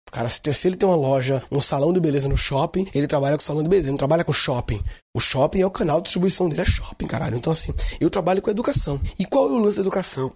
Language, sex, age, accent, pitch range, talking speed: Portuguese, male, 20-39, Brazilian, 135-175 Hz, 270 wpm